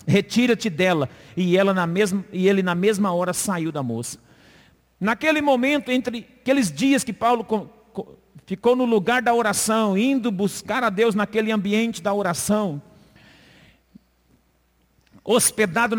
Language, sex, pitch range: Portuguese, male, 195-255 Hz